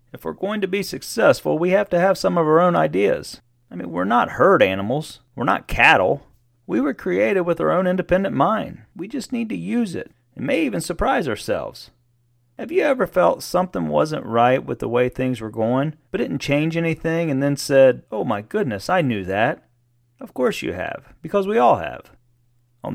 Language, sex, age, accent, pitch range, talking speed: English, male, 30-49, American, 135-185 Hz, 205 wpm